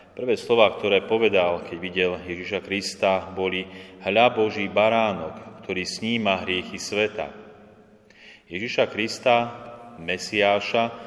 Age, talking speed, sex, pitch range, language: 30-49, 105 wpm, male, 95-105 Hz, Slovak